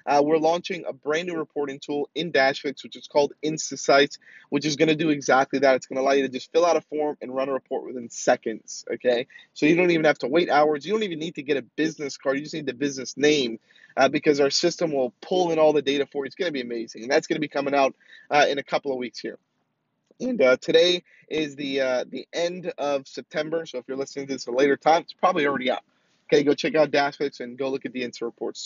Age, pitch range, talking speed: 20-39, 140-180 Hz, 270 wpm